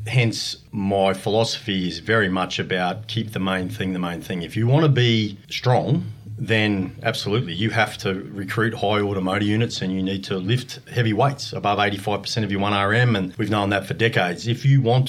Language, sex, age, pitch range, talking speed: English, male, 40-59, 100-125 Hz, 200 wpm